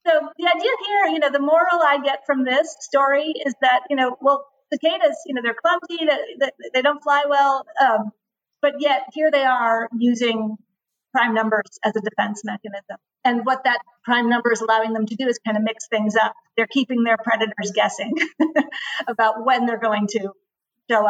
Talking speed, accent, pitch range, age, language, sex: 195 wpm, American, 225-280 Hz, 40-59, English, female